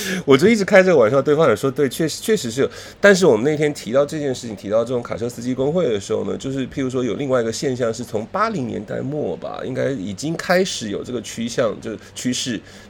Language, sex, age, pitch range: Chinese, male, 30-49, 110-180 Hz